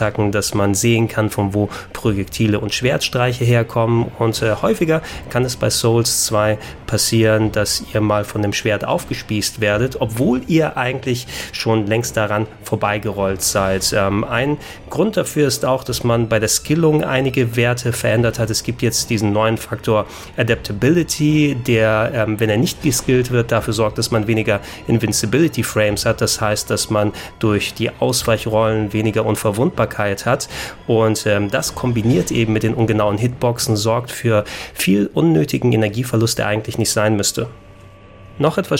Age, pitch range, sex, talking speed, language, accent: 30-49, 105-120 Hz, male, 160 wpm, German, German